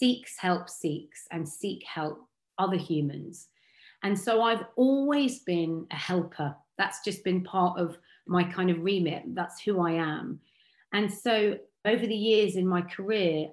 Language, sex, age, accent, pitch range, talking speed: English, female, 30-49, British, 165-210 Hz, 160 wpm